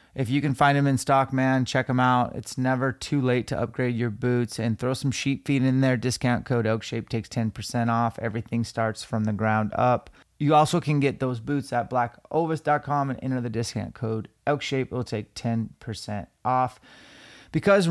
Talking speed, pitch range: 195 wpm, 120-135 Hz